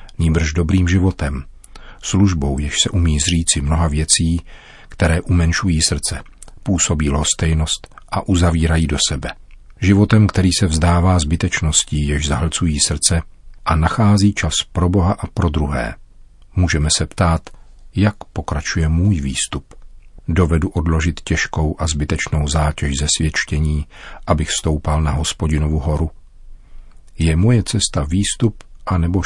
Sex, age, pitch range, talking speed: male, 40-59, 75-95 Hz, 125 wpm